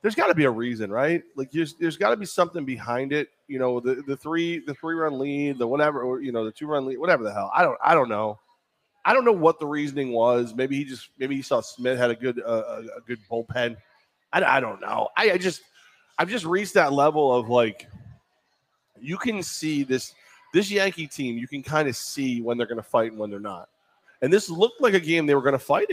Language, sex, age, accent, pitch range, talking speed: English, male, 20-39, American, 120-155 Hz, 250 wpm